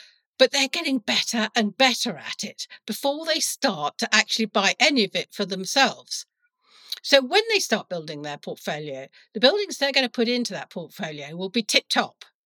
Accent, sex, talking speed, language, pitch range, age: British, female, 190 wpm, English, 180-245 Hz, 50-69